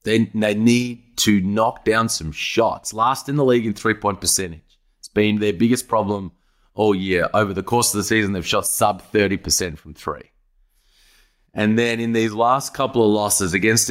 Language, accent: English, Australian